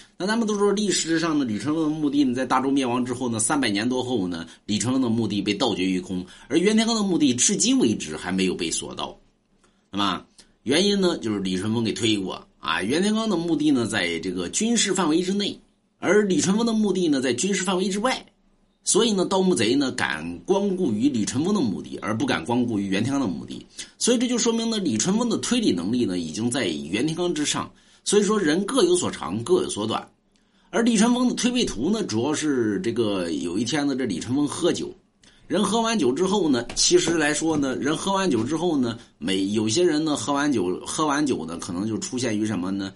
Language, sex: Chinese, male